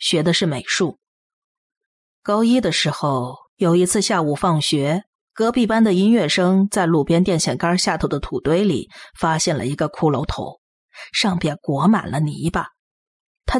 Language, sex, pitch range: Chinese, female, 160-225 Hz